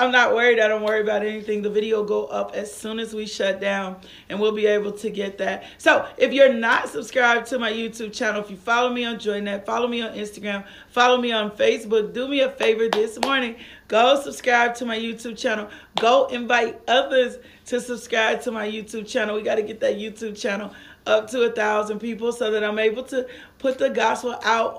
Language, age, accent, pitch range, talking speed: English, 40-59, American, 220-255 Hz, 220 wpm